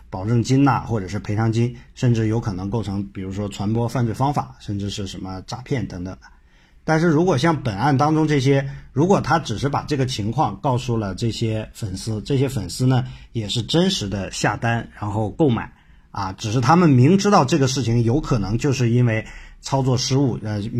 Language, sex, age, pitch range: Chinese, male, 50-69, 105-140 Hz